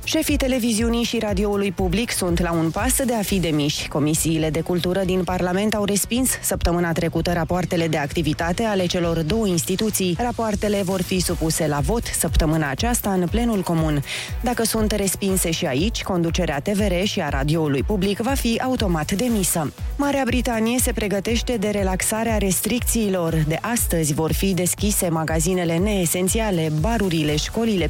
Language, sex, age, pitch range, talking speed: Romanian, female, 20-39, 165-210 Hz, 155 wpm